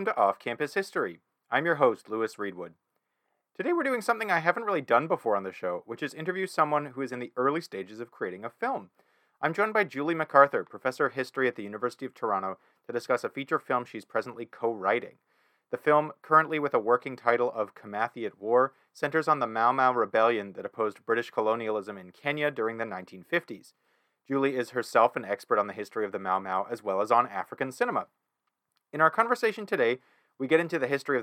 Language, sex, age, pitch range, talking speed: English, male, 30-49, 110-150 Hz, 210 wpm